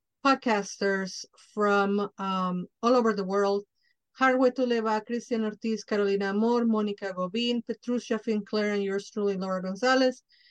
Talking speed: 125 wpm